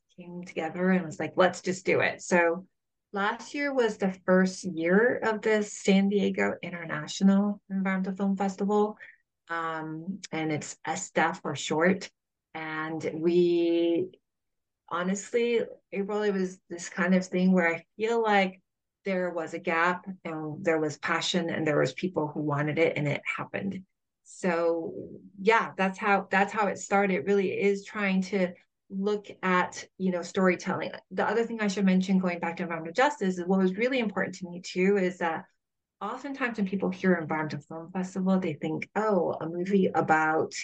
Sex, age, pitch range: female, 30-49, 165-200 Hz